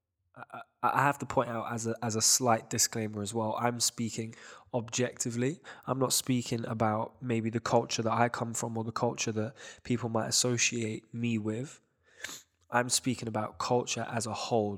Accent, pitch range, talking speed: British, 110-125 Hz, 175 wpm